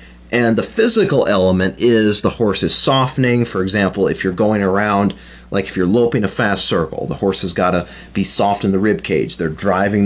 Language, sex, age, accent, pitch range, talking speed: English, male, 30-49, American, 95-120 Hz, 210 wpm